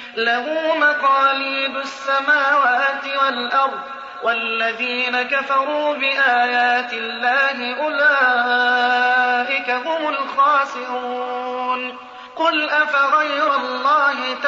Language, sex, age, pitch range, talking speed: Arabic, male, 30-49, 250-285 Hz, 60 wpm